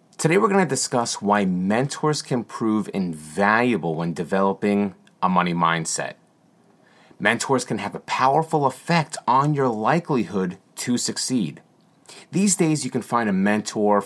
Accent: American